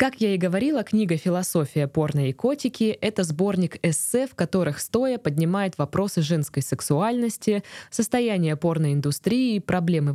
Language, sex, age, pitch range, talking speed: Russian, female, 20-39, 160-215 Hz, 135 wpm